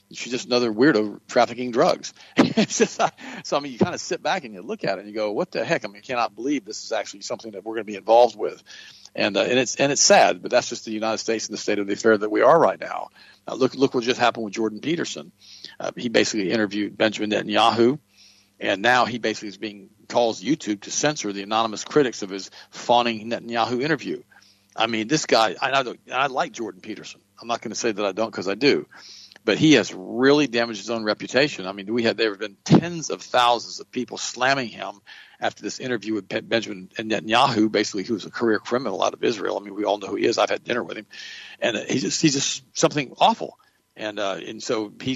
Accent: American